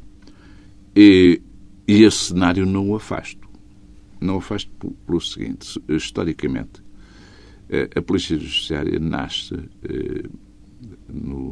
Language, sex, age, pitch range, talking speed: Portuguese, male, 60-79, 75-100 Hz, 95 wpm